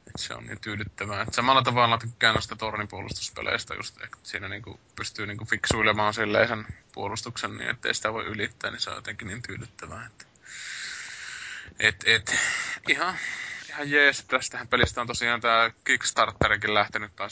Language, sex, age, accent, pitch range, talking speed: Finnish, male, 20-39, native, 105-115 Hz, 150 wpm